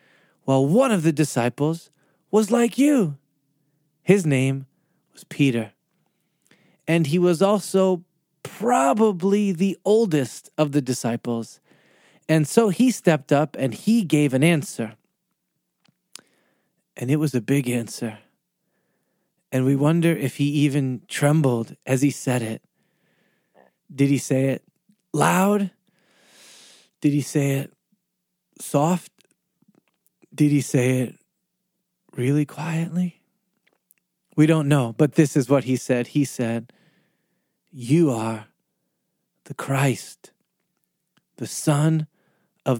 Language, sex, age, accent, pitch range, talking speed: English, male, 20-39, American, 135-180 Hz, 115 wpm